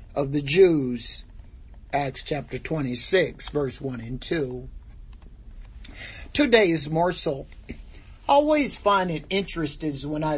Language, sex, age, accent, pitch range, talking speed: English, male, 50-69, American, 140-195 Hz, 115 wpm